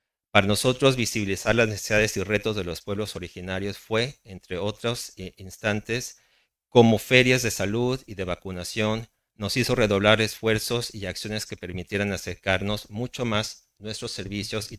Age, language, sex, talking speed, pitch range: 40-59, English, male, 145 wpm, 95-115 Hz